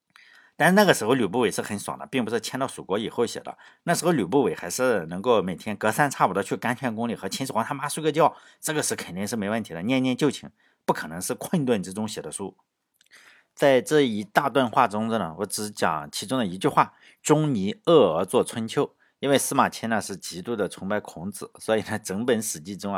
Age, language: 50-69, Chinese